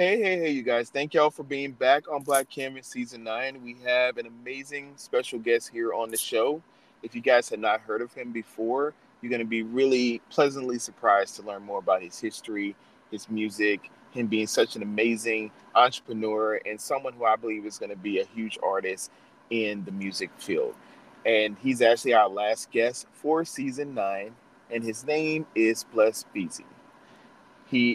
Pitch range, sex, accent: 110-150 Hz, male, American